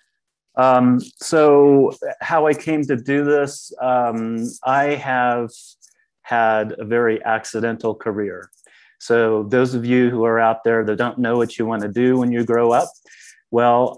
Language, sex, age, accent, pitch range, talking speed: English, male, 30-49, American, 105-125 Hz, 155 wpm